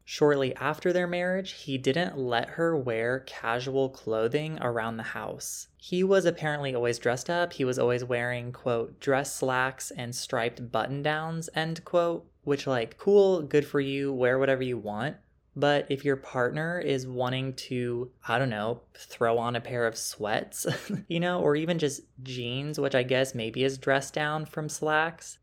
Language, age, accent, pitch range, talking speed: English, 20-39, American, 120-155 Hz, 175 wpm